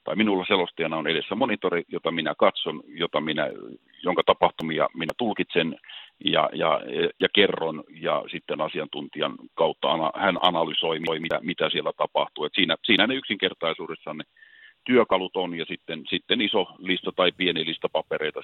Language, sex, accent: Finnish, male, native